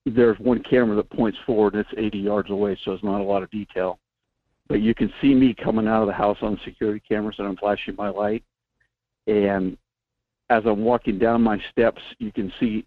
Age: 50-69